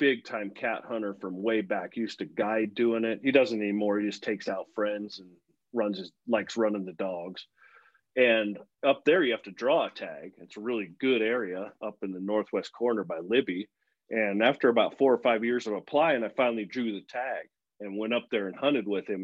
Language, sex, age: English, male, 40-59